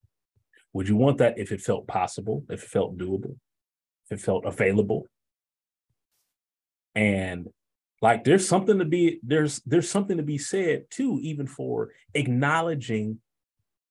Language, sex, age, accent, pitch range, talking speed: English, male, 30-49, American, 110-170 Hz, 140 wpm